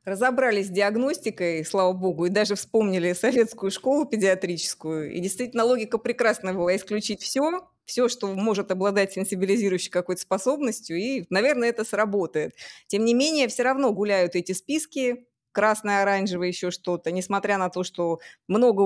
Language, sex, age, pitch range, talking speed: Russian, female, 20-39, 180-235 Hz, 145 wpm